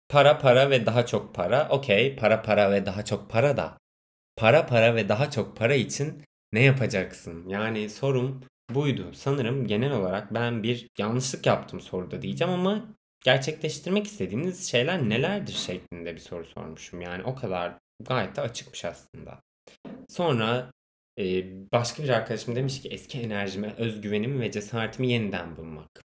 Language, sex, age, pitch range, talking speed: Turkish, male, 20-39, 95-125 Hz, 145 wpm